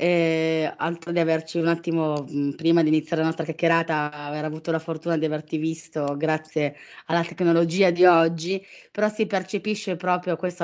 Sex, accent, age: female, native, 20-39